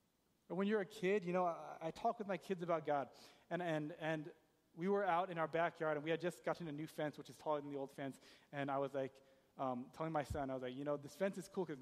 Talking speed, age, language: 285 wpm, 30-49, English